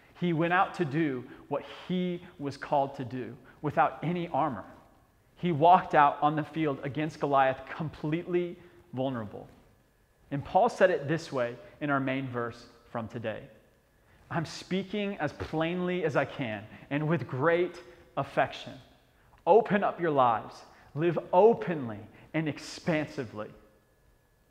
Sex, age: male, 30-49